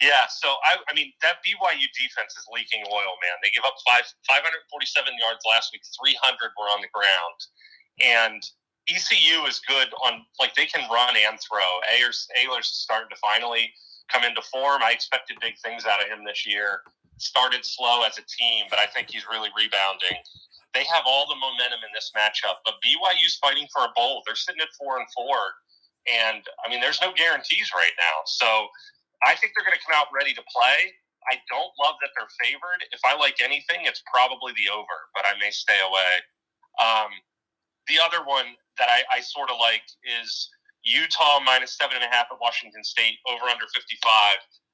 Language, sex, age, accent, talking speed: English, male, 30-49, American, 195 wpm